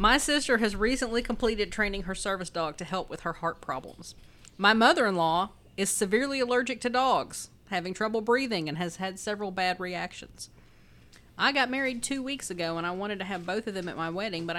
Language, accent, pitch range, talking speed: English, American, 170-220 Hz, 200 wpm